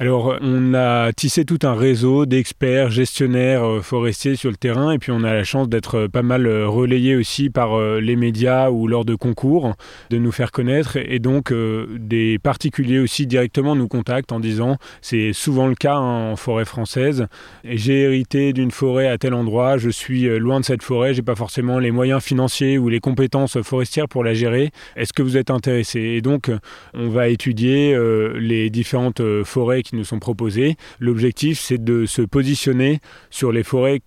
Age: 20-39